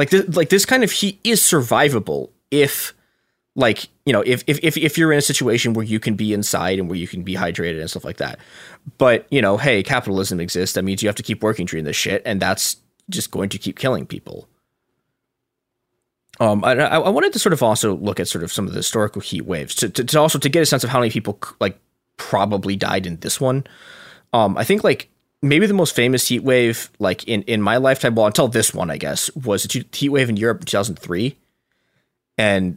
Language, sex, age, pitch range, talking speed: English, male, 20-39, 100-145 Hz, 230 wpm